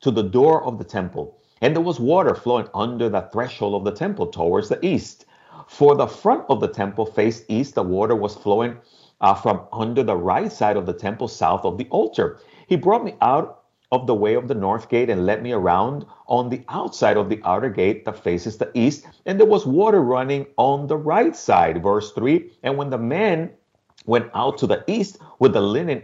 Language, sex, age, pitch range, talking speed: English, male, 50-69, 110-155 Hz, 215 wpm